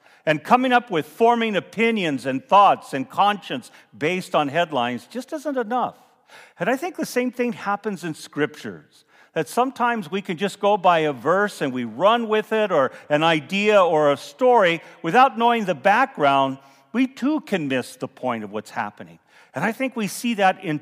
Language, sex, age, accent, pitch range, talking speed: English, male, 50-69, American, 145-220 Hz, 185 wpm